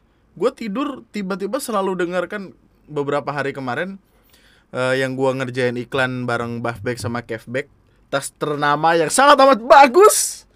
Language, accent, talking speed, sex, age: Indonesian, native, 135 wpm, male, 20-39